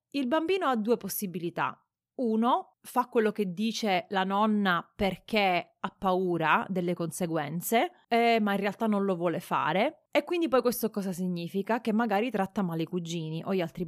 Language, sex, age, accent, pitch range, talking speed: Italian, female, 30-49, native, 180-235 Hz, 175 wpm